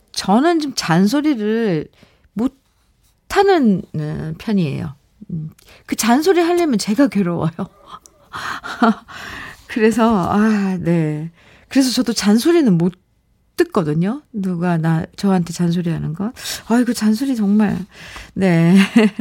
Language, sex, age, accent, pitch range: Korean, female, 50-69, native, 180-250 Hz